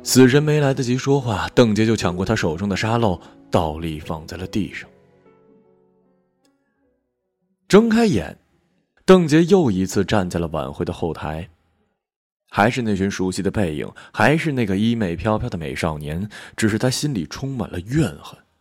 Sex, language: male, Chinese